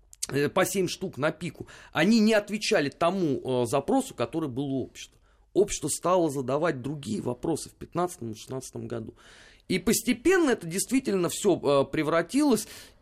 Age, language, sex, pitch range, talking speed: 30-49, Russian, male, 130-180 Hz, 135 wpm